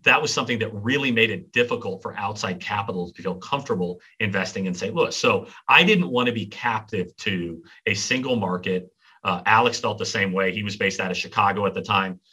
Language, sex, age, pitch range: English, male, 40-59, 95-120 Hz